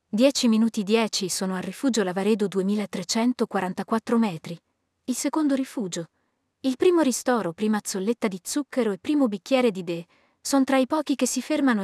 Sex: female